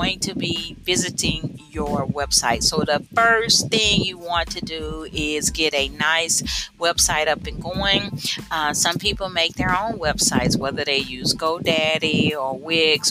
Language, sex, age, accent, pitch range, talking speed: English, female, 50-69, American, 155-185 Hz, 155 wpm